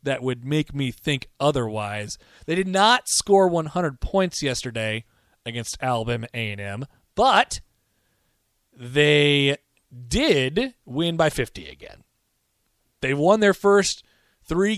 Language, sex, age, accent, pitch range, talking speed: English, male, 30-49, American, 115-150 Hz, 115 wpm